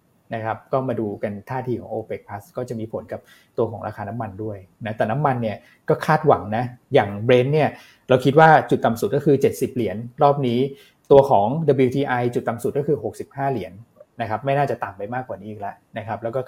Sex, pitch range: male, 110-135 Hz